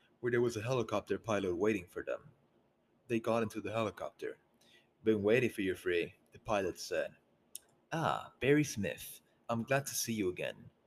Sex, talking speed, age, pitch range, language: male, 170 wpm, 30-49, 110-130 Hz, English